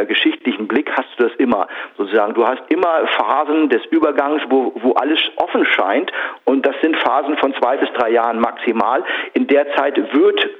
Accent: German